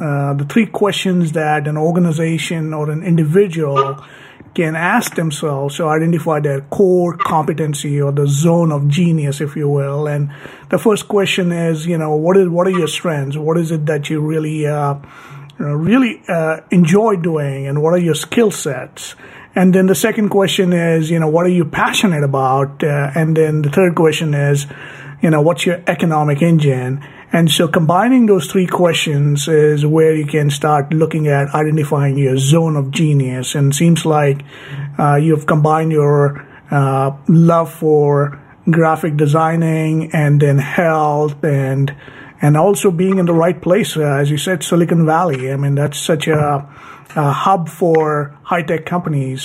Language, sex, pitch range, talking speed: English, male, 145-175 Hz, 170 wpm